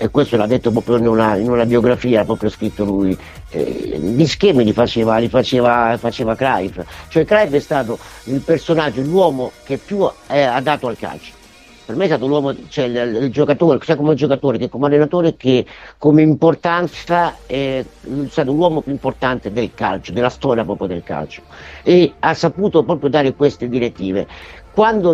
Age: 50-69